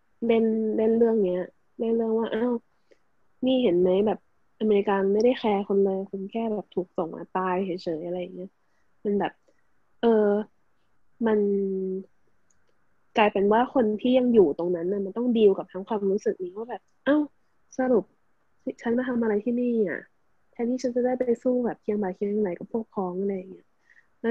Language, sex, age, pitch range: Thai, female, 20-39, 195-235 Hz